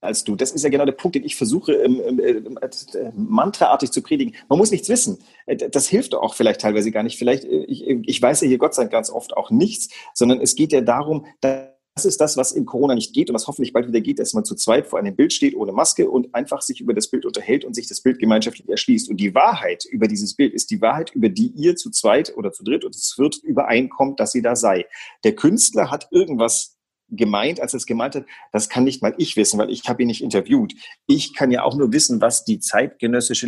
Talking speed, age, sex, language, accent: 255 wpm, 40-59, male, German, German